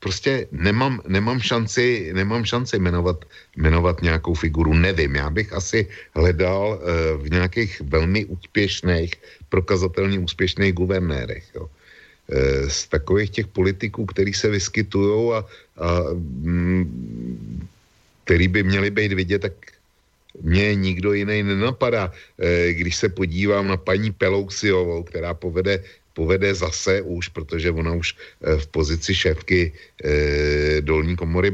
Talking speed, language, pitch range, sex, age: 120 wpm, Slovak, 75-95 Hz, male, 60-79